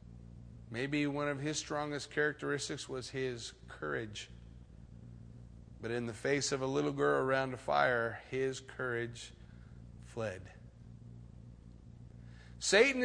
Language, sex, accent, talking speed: English, male, American, 110 wpm